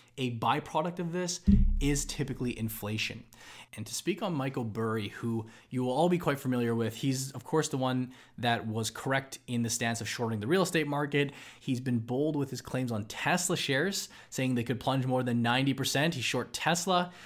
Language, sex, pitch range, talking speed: English, male, 115-140 Hz, 200 wpm